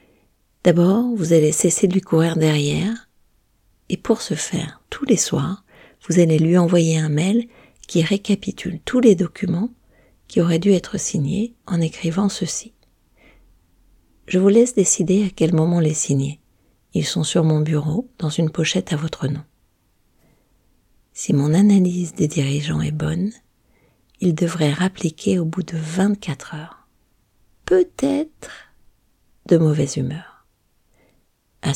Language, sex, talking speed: French, female, 140 wpm